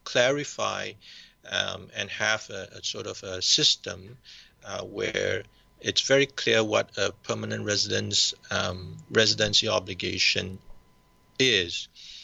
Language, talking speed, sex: English, 115 wpm, male